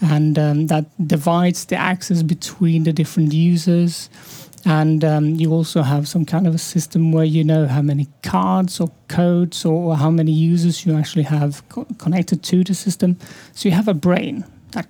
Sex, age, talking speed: male, 30-49, 185 wpm